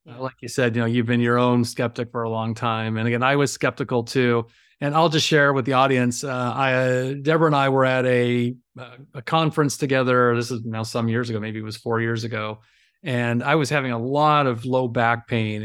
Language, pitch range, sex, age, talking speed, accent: English, 115-135 Hz, male, 30-49, 235 wpm, American